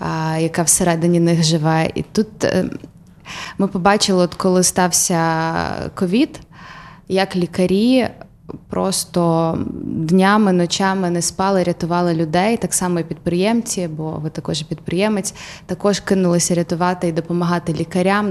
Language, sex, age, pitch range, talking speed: Ukrainian, female, 20-39, 170-195 Hz, 120 wpm